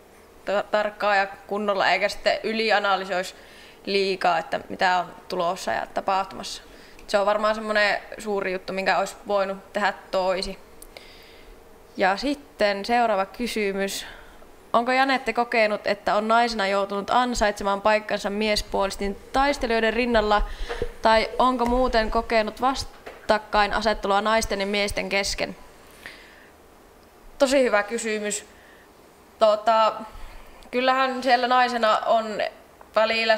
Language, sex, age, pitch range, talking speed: Finnish, female, 20-39, 195-225 Hz, 105 wpm